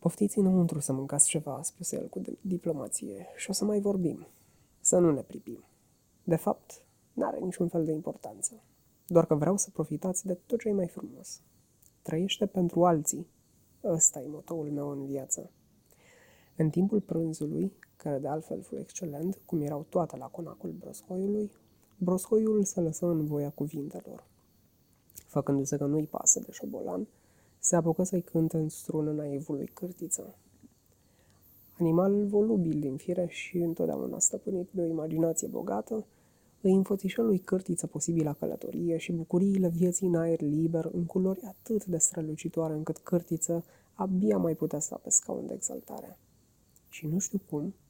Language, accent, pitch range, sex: Romanian, native, 155-190 Hz, female